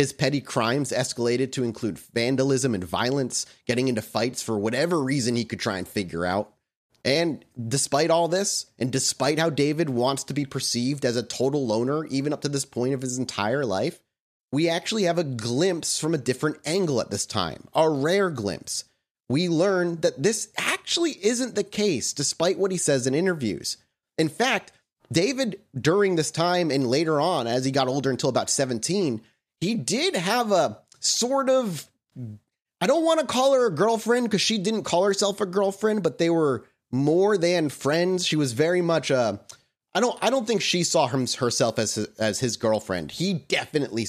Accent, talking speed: American, 185 wpm